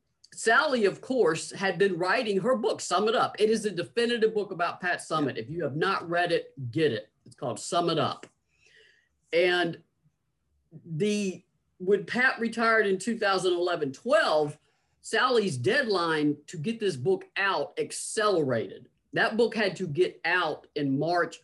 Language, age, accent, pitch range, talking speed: English, 50-69, American, 150-205 Hz, 155 wpm